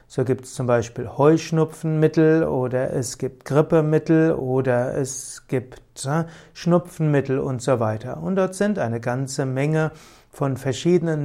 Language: German